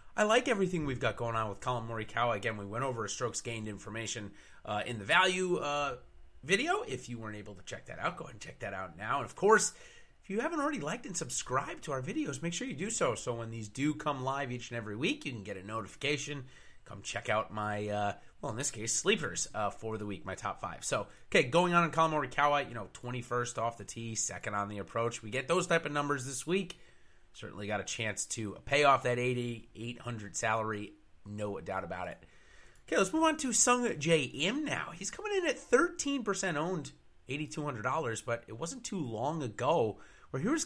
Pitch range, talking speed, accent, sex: 110-155 Hz, 225 wpm, American, male